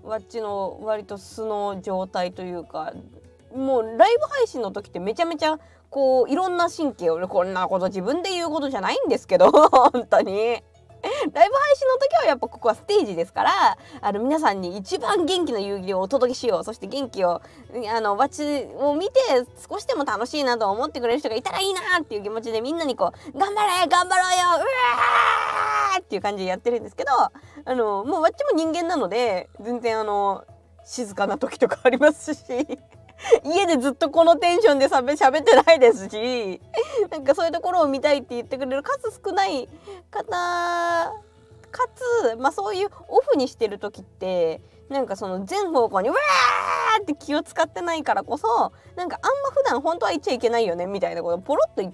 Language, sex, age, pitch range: Japanese, female, 20-39, 220-350 Hz